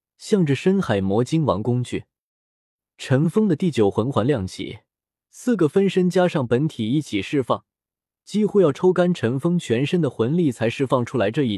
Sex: male